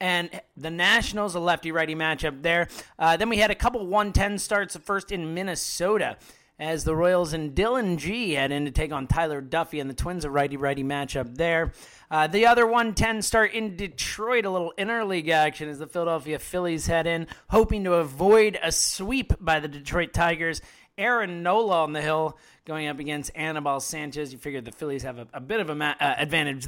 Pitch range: 155-200 Hz